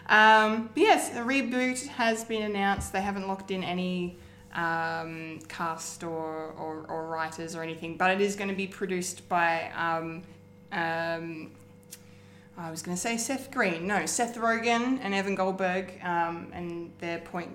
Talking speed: 160 wpm